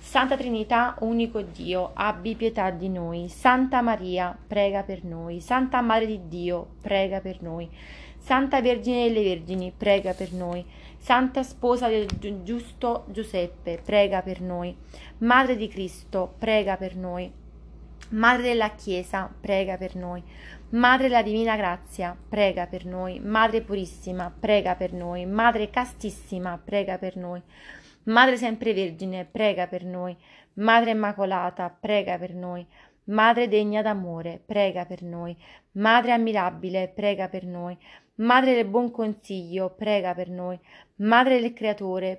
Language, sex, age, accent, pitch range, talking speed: Italian, female, 20-39, native, 180-225 Hz, 135 wpm